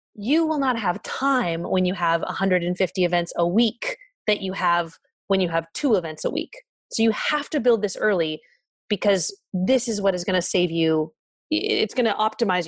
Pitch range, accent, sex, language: 190-270 Hz, American, female, English